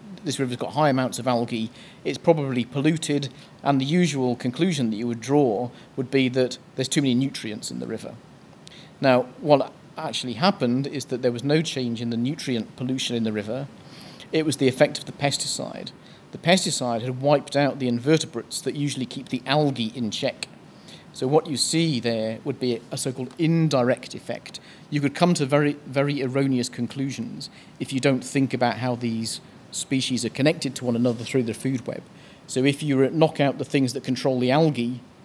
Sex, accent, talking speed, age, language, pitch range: male, British, 190 wpm, 40-59, English, 120-145 Hz